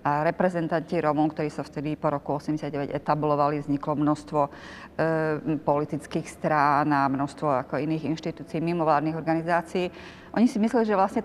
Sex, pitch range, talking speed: female, 155-180 Hz, 150 wpm